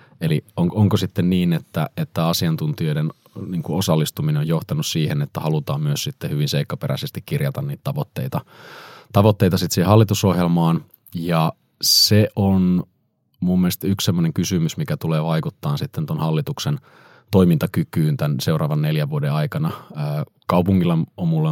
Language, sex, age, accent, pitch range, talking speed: Finnish, male, 30-49, native, 95-155 Hz, 135 wpm